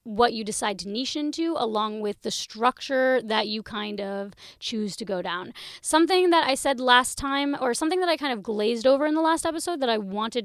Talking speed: 225 wpm